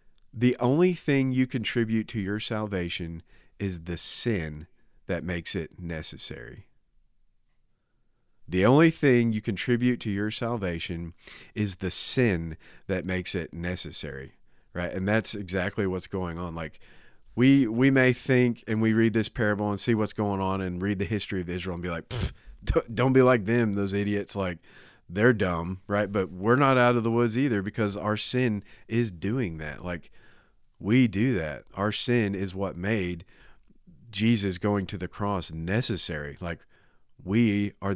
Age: 40-59